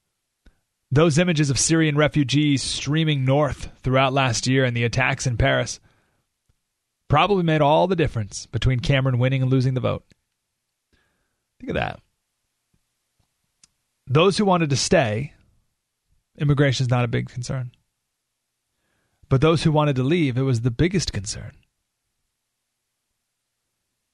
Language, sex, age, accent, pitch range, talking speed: English, male, 30-49, American, 120-175 Hz, 130 wpm